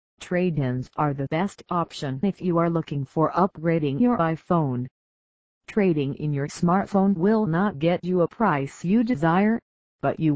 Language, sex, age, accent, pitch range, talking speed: English, female, 50-69, American, 140-180 Hz, 155 wpm